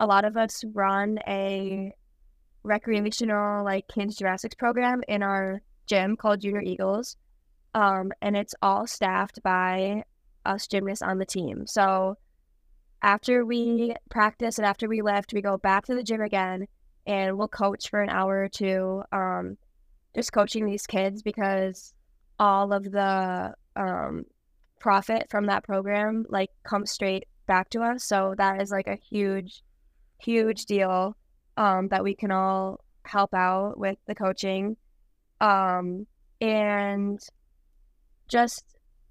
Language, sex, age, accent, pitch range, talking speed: English, female, 10-29, American, 190-210 Hz, 140 wpm